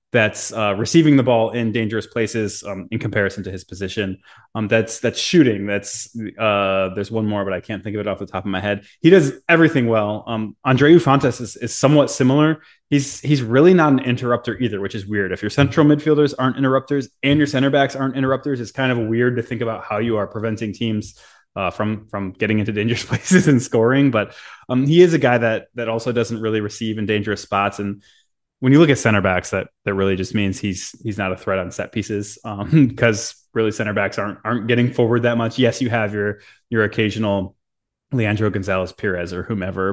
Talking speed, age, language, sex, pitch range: 220 wpm, 20-39, English, male, 100-125 Hz